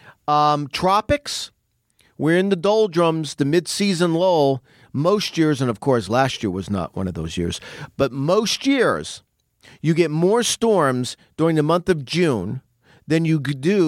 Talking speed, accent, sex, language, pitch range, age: 160 wpm, American, male, English, 125-160 Hz, 40-59